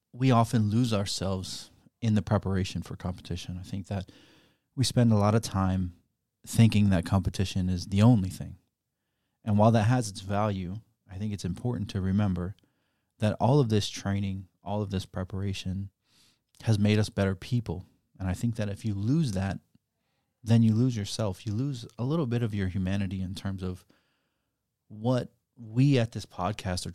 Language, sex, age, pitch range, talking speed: English, male, 30-49, 95-115 Hz, 180 wpm